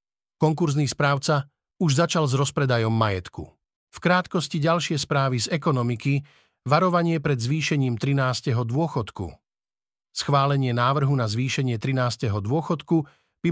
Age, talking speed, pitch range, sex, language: 50-69, 110 wpm, 125-155 Hz, male, Slovak